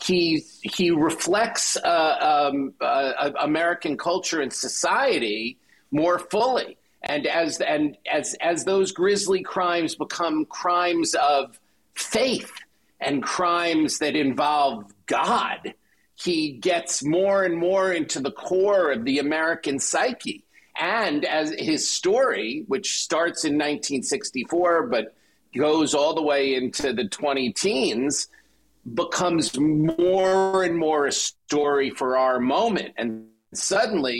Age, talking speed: 50-69, 120 wpm